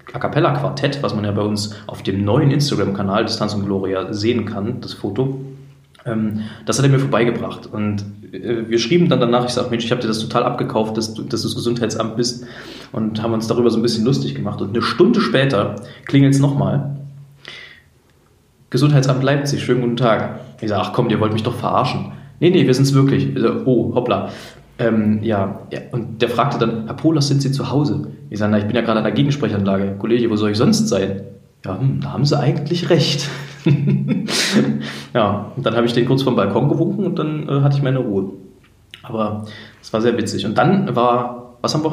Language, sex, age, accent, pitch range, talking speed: German, male, 20-39, German, 105-140 Hz, 210 wpm